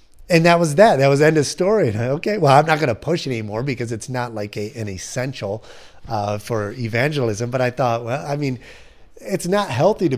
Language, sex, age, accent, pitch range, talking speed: English, male, 30-49, American, 115-150 Hz, 210 wpm